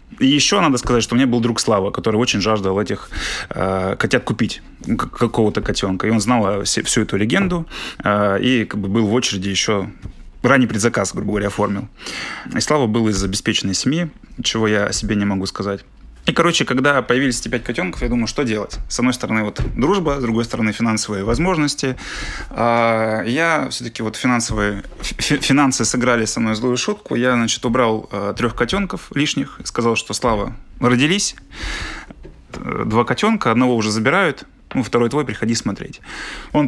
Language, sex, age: Russian, male, 20-39